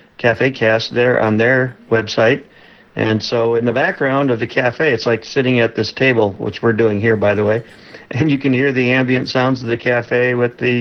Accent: American